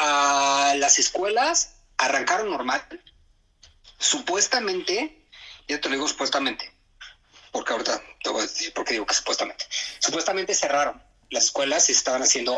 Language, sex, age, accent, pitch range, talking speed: English, male, 30-49, Mexican, 120-150 Hz, 130 wpm